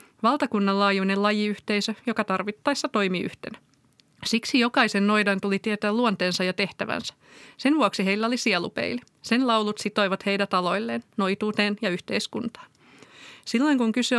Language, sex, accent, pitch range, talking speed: Finnish, female, native, 185-220 Hz, 130 wpm